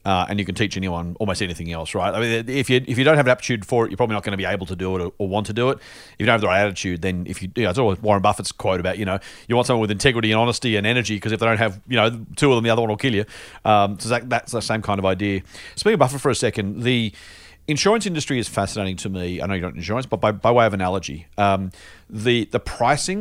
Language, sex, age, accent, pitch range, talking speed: English, male, 40-59, Australian, 100-125 Hz, 310 wpm